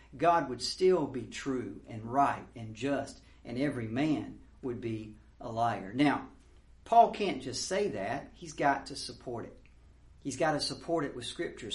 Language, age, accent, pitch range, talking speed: English, 50-69, American, 115-150 Hz, 175 wpm